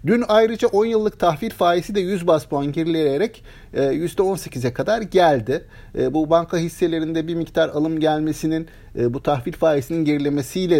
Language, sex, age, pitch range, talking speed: Turkish, male, 50-69, 115-155 Hz, 140 wpm